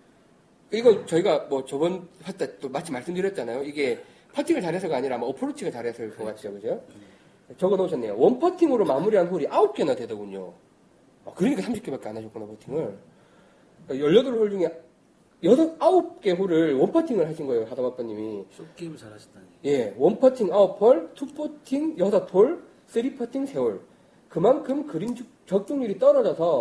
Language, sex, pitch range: Korean, male, 170-275 Hz